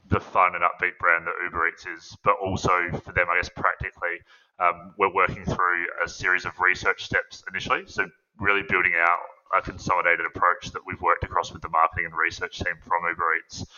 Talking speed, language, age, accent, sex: 200 wpm, English, 20-39, Australian, male